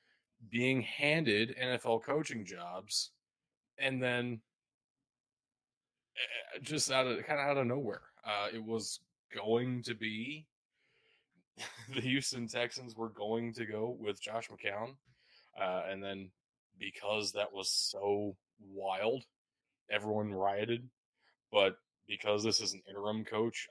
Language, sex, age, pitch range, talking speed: English, male, 20-39, 105-125 Hz, 120 wpm